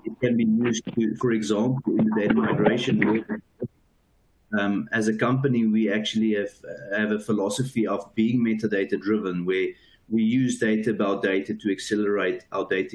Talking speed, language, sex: 160 wpm, English, male